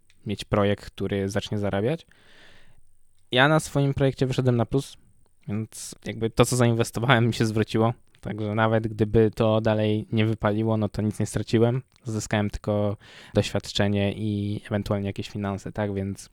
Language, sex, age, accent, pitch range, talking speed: Polish, male, 20-39, native, 105-120 Hz, 150 wpm